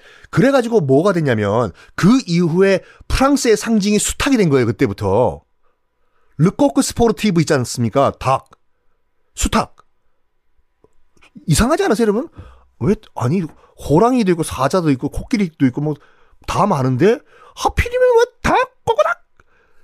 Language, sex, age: Korean, male, 40-59